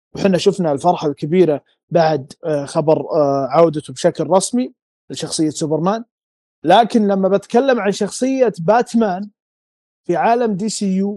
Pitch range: 160-205 Hz